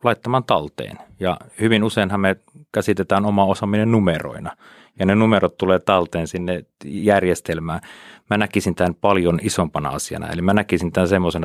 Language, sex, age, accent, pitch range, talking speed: Finnish, male, 30-49, native, 85-100 Hz, 145 wpm